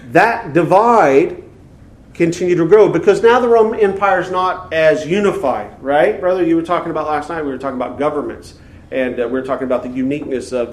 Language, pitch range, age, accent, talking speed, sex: English, 140-230 Hz, 40-59, American, 200 wpm, male